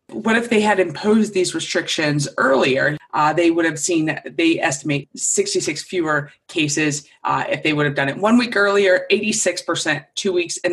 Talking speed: 180 wpm